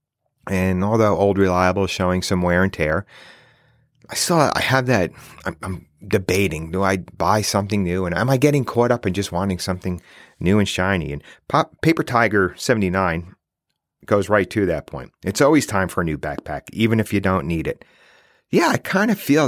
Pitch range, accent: 90-115 Hz, American